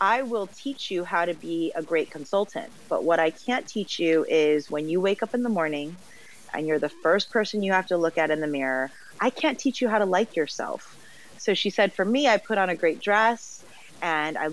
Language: English